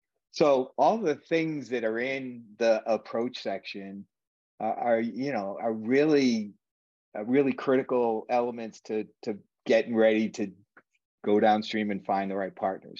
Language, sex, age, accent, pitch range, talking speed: English, male, 40-59, American, 110-130 Hz, 140 wpm